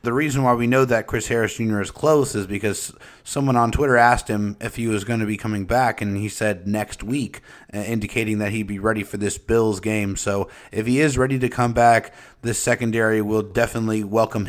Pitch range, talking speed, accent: 110-135 Hz, 220 wpm, American